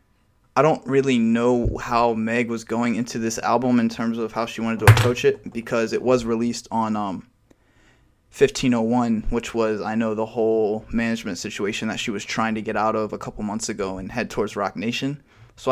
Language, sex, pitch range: English, male, 110-125 Hz